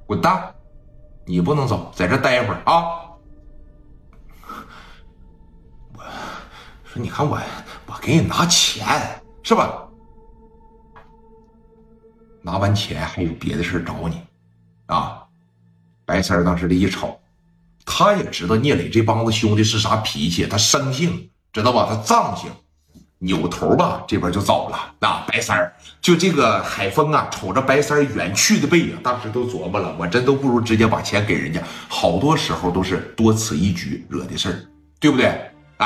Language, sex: Chinese, male